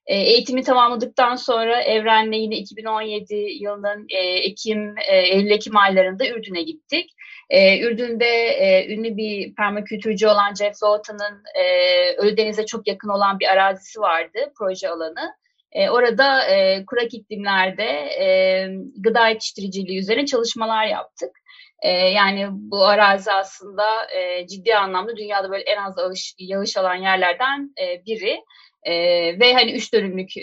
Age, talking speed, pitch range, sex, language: 30-49, 130 wpm, 195-270 Hz, female, Turkish